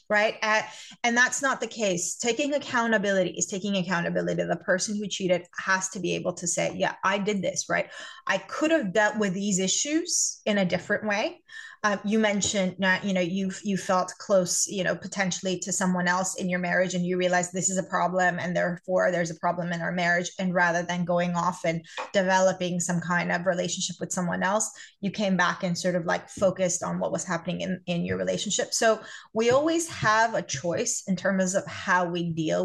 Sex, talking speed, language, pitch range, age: female, 210 wpm, English, 180-215 Hz, 20-39